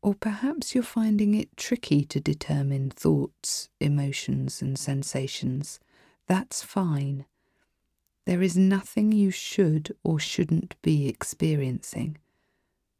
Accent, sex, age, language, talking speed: British, female, 40-59, English, 105 wpm